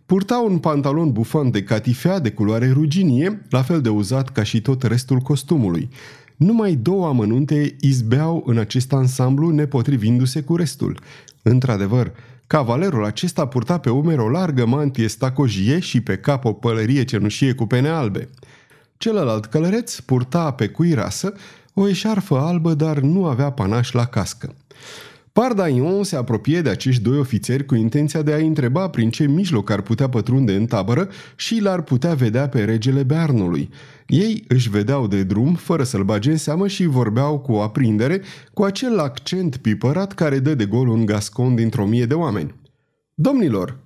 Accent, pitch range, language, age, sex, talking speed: native, 120-160 Hz, Romanian, 30-49, male, 165 wpm